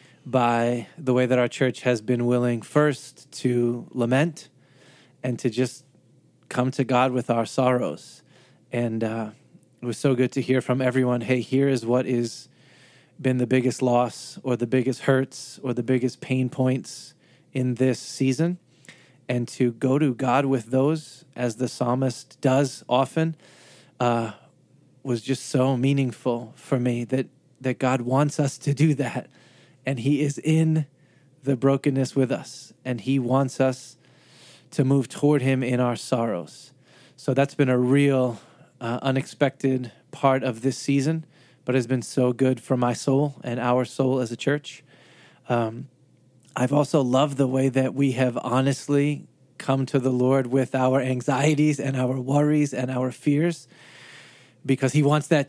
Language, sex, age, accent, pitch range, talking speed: English, male, 20-39, American, 125-140 Hz, 160 wpm